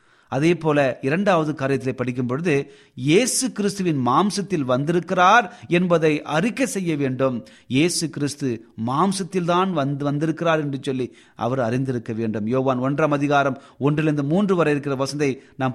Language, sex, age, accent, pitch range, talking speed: Tamil, male, 30-49, native, 125-165 Hz, 130 wpm